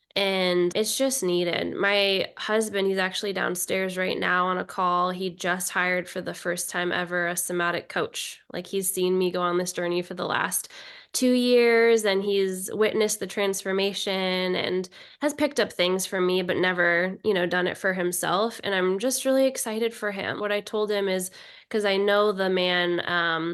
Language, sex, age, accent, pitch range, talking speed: English, female, 10-29, American, 180-210 Hz, 195 wpm